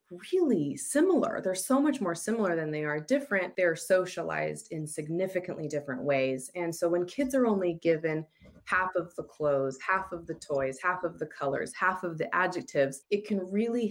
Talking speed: 185 wpm